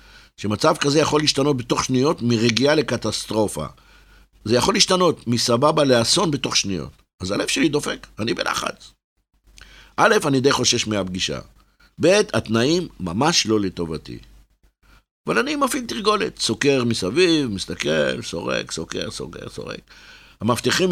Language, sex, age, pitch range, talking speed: Hebrew, male, 50-69, 105-140 Hz, 125 wpm